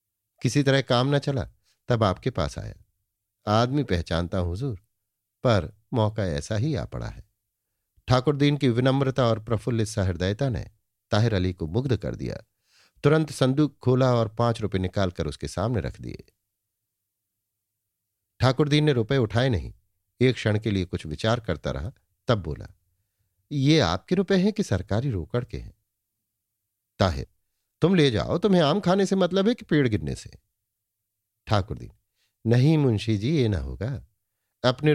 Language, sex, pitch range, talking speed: Hindi, male, 100-125 Hz, 155 wpm